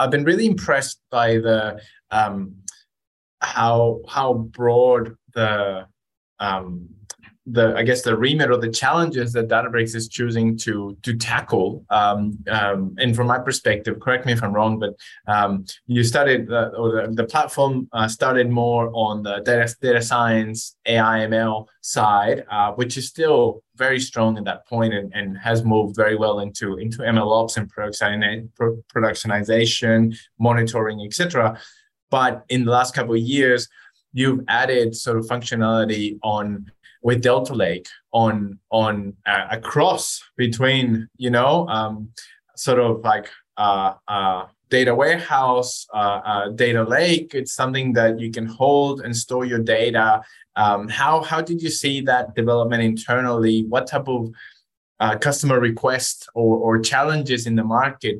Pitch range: 110-125 Hz